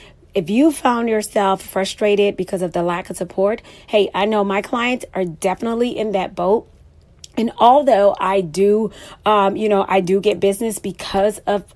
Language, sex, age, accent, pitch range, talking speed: English, female, 30-49, American, 185-220 Hz, 175 wpm